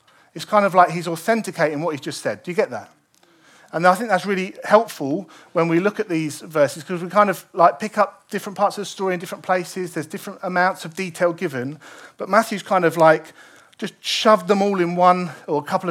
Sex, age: male, 40-59